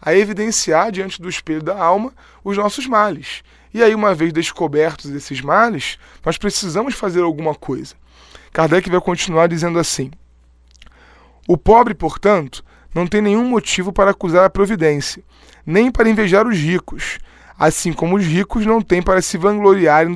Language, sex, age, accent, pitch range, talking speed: Portuguese, male, 20-39, Brazilian, 155-205 Hz, 155 wpm